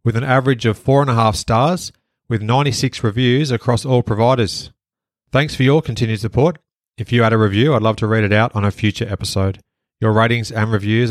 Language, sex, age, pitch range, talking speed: English, male, 30-49, 105-125 Hz, 210 wpm